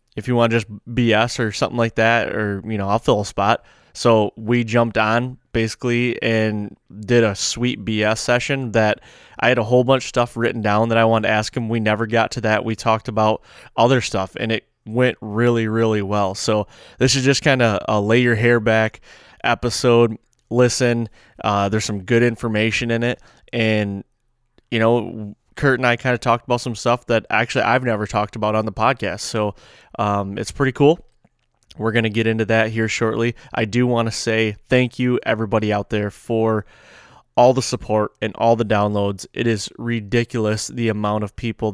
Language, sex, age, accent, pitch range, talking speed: English, male, 20-39, American, 105-120 Hz, 200 wpm